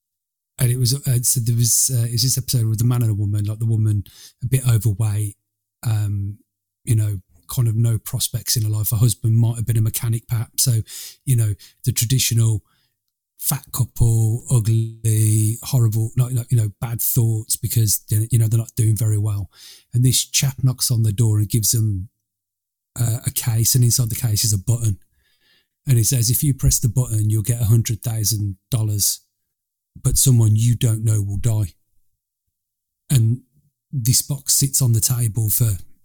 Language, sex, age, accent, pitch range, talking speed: English, male, 30-49, British, 110-125 Hz, 185 wpm